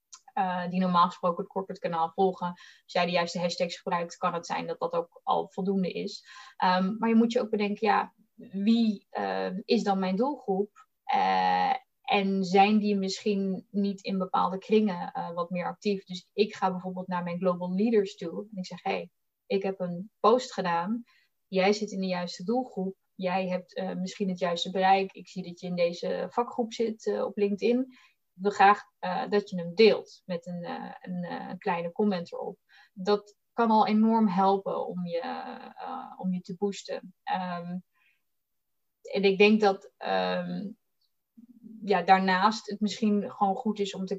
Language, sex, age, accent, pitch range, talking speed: Dutch, female, 20-39, Dutch, 180-220 Hz, 180 wpm